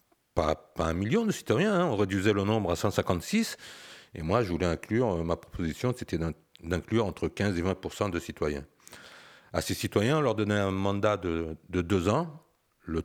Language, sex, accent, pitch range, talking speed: French, male, French, 85-120 Hz, 195 wpm